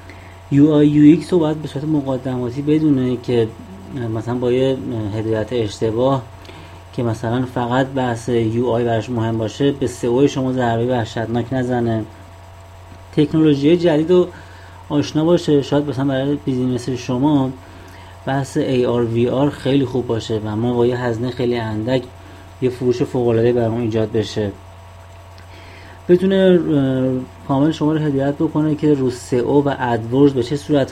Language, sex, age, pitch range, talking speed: Persian, male, 30-49, 110-140 Hz, 135 wpm